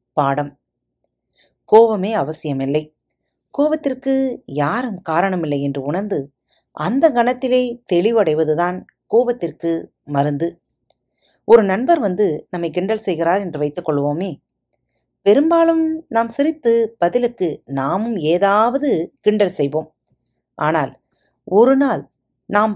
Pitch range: 155-230 Hz